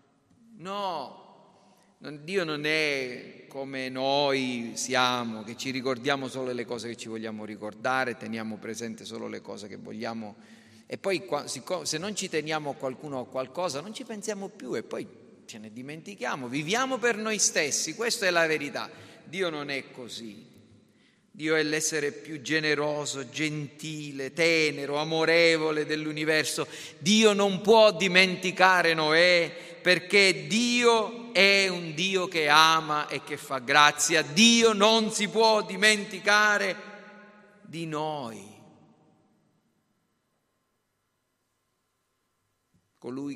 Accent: native